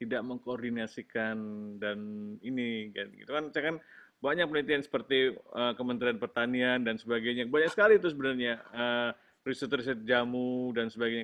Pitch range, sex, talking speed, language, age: 120-150 Hz, male, 140 wpm, Indonesian, 30-49